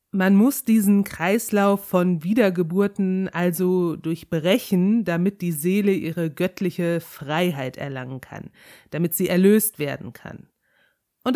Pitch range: 180-220 Hz